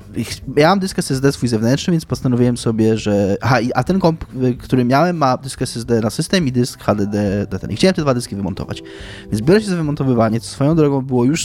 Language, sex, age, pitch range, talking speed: Polish, male, 20-39, 110-145 Hz, 205 wpm